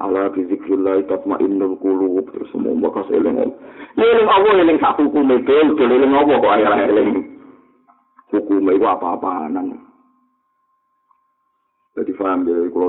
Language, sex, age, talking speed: Indonesian, male, 50-69, 110 wpm